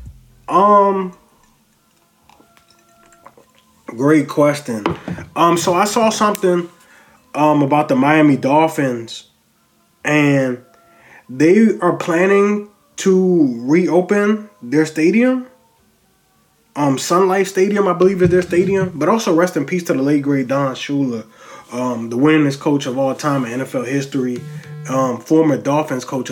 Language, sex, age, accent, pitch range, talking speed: English, male, 20-39, American, 135-170 Hz, 125 wpm